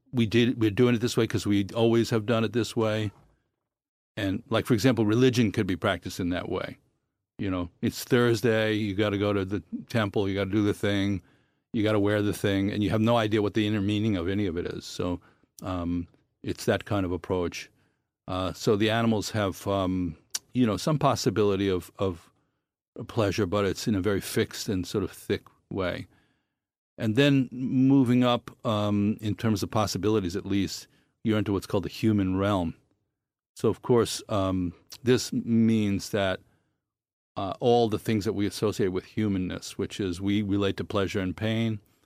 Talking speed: 195 wpm